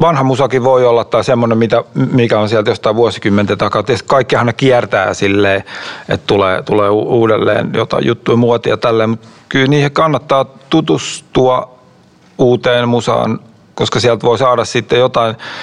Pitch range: 110-140 Hz